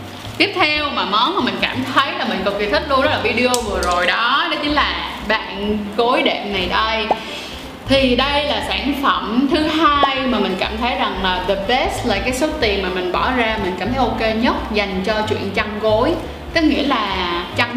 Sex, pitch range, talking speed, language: female, 220-285 Hz, 225 wpm, Vietnamese